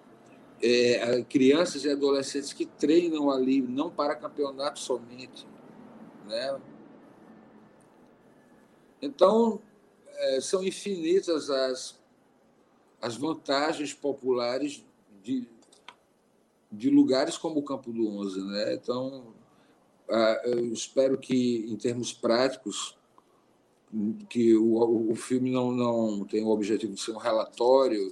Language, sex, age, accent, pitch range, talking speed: Portuguese, male, 50-69, Brazilian, 120-165 Hz, 100 wpm